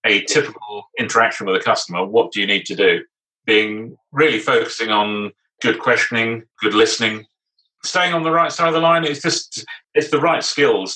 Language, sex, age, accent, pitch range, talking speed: English, male, 30-49, British, 105-155 Hz, 185 wpm